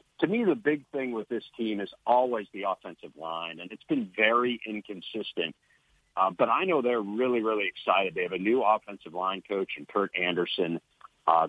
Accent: American